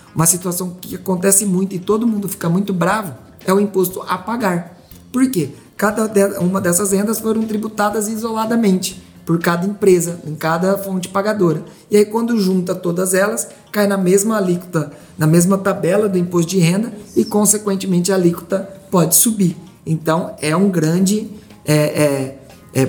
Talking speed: 165 wpm